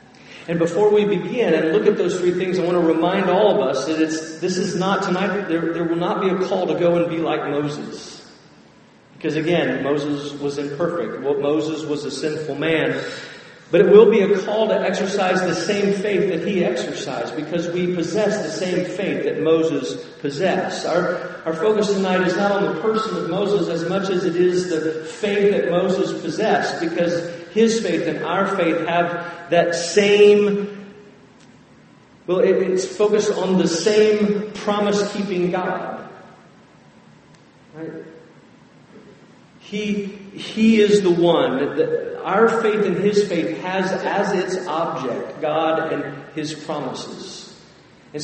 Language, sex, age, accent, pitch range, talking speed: English, male, 40-59, American, 165-200 Hz, 165 wpm